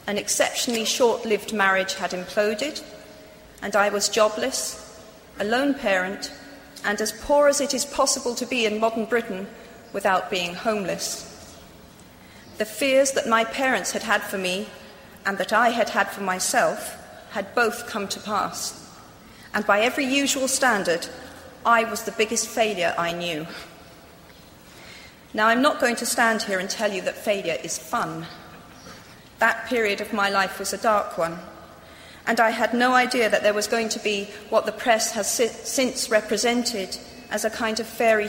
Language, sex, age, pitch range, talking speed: Persian, female, 40-59, 200-240 Hz, 165 wpm